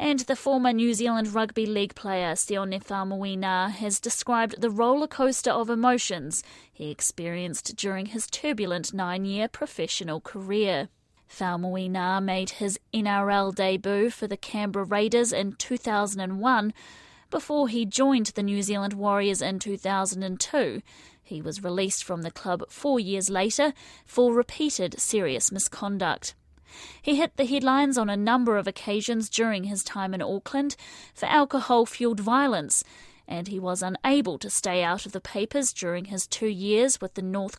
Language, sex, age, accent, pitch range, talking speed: English, female, 30-49, Australian, 195-245 Hz, 150 wpm